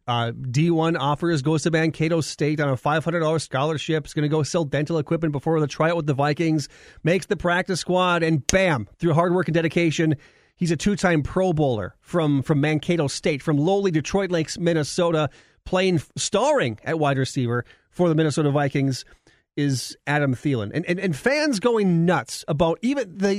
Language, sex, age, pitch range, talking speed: English, male, 40-59, 150-205 Hz, 185 wpm